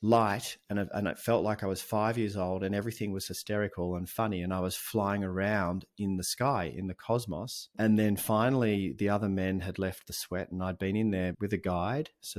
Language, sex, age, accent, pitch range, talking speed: English, male, 30-49, Australian, 90-110 Hz, 230 wpm